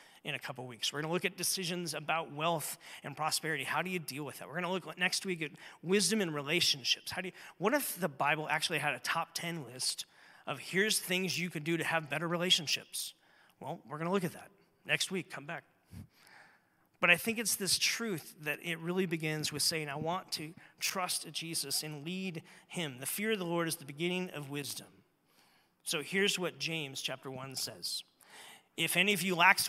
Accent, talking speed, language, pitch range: American, 215 wpm, English, 145-180 Hz